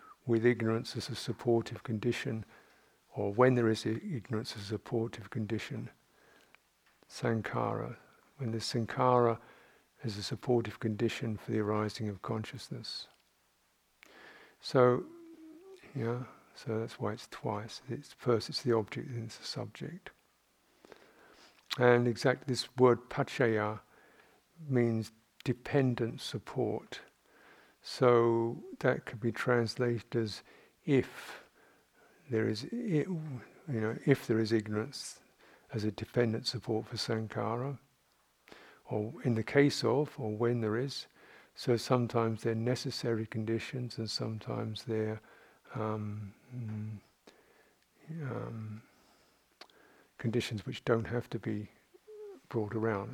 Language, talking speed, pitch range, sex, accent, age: English, 115 wpm, 110-125 Hz, male, British, 50-69